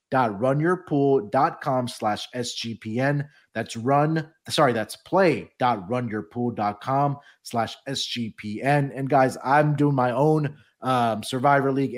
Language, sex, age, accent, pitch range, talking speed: English, male, 30-49, American, 115-140 Hz, 110 wpm